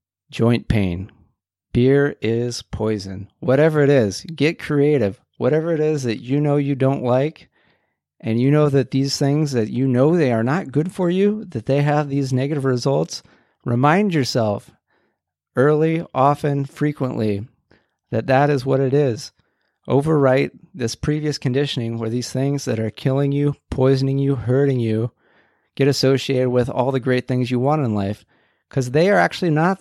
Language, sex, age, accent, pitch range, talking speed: English, male, 40-59, American, 115-145 Hz, 165 wpm